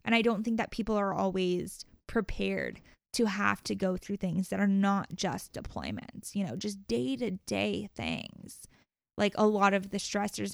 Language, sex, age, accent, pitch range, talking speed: English, female, 10-29, American, 190-220 Hz, 190 wpm